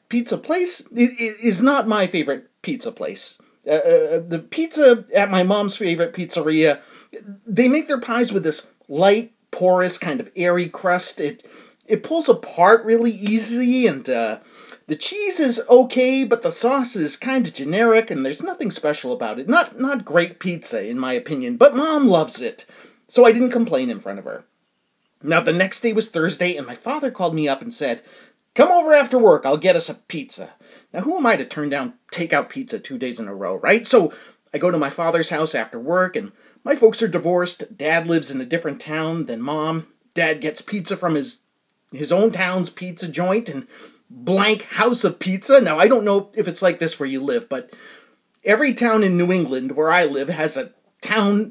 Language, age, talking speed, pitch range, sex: English, 30-49, 200 wpm, 170-245 Hz, male